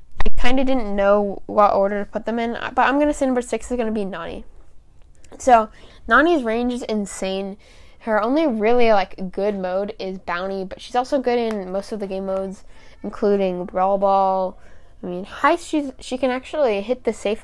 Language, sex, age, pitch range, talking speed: English, female, 10-29, 195-245 Hz, 185 wpm